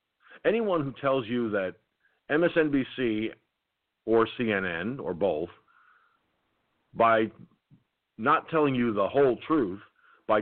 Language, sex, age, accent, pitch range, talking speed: English, male, 50-69, American, 110-140 Hz, 105 wpm